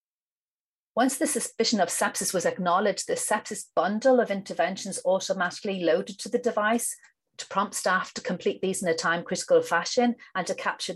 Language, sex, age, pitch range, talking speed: English, female, 40-59, 180-235 Hz, 165 wpm